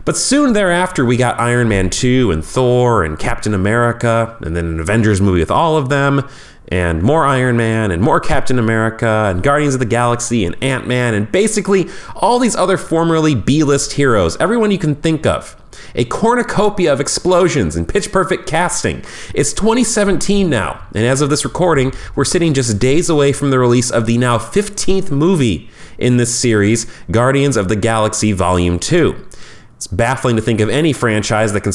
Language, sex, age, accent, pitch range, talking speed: English, male, 30-49, American, 100-140 Hz, 180 wpm